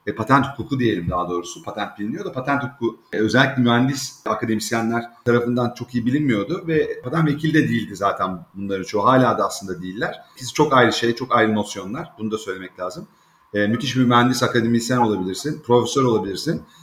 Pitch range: 125-155 Hz